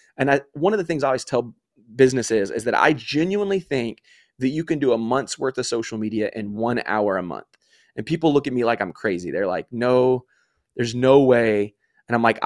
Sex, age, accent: male, 20-39, American